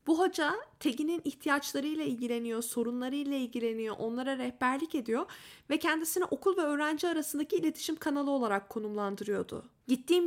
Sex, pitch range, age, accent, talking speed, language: female, 245-315 Hz, 10-29, native, 125 wpm, Turkish